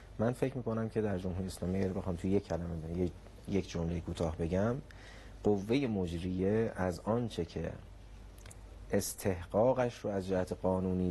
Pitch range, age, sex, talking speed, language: 85-100 Hz, 30-49, male, 150 wpm, Persian